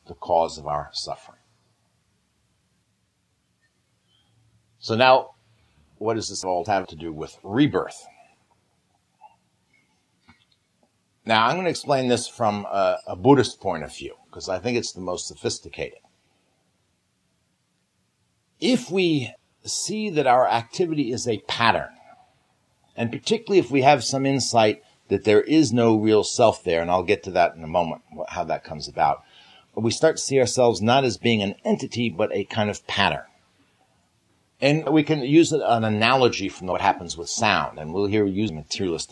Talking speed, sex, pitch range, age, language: 155 wpm, male, 95-135 Hz, 60-79, English